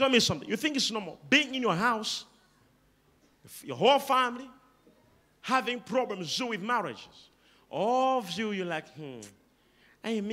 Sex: male